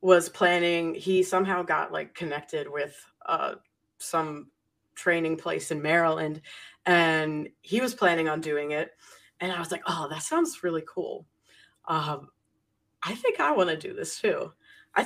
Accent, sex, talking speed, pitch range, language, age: American, female, 155 wpm, 155-185 Hz, English, 20-39